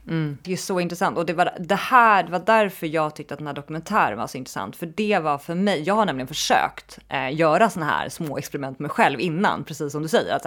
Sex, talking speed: female, 265 wpm